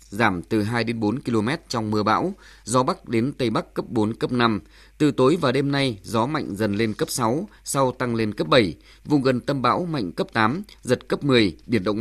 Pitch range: 110-135 Hz